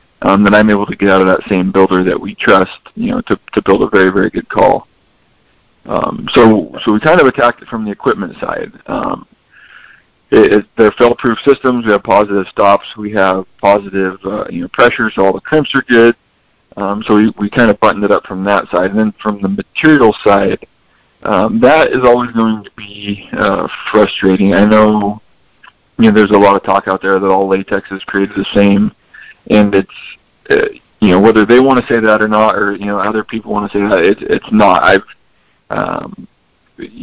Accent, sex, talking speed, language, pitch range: American, male, 210 wpm, English, 100-115 Hz